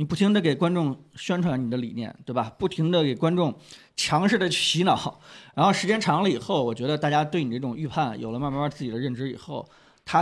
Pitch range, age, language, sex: 130-170 Hz, 20-39, Chinese, male